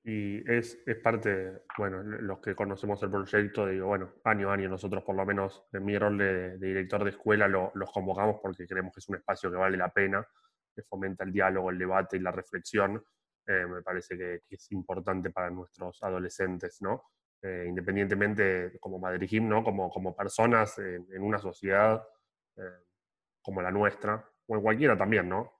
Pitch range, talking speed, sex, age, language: 95-105 Hz, 185 wpm, male, 20-39, Spanish